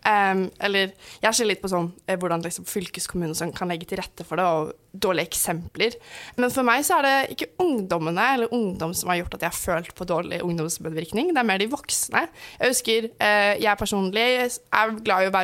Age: 20-39